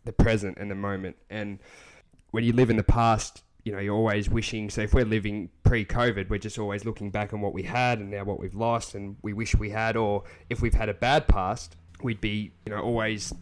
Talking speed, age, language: 235 wpm, 20-39, English